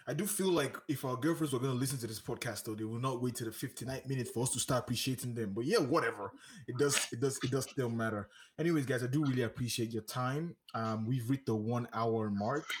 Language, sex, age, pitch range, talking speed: English, male, 20-39, 110-135 Hz, 260 wpm